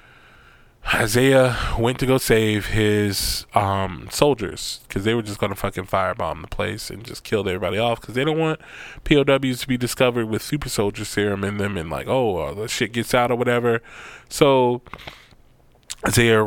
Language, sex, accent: English, male, American